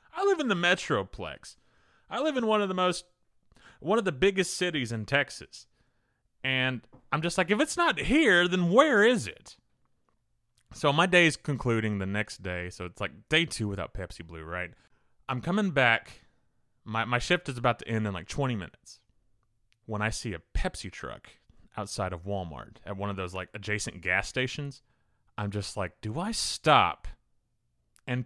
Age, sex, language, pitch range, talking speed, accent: 30-49, male, English, 105-170 Hz, 185 wpm, American